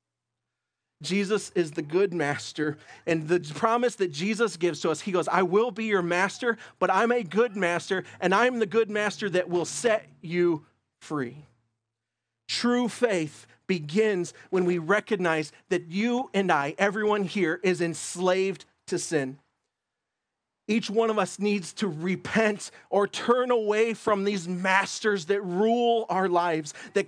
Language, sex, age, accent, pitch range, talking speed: English, male, 40-59, American, 160-220 Hz, 155 wpm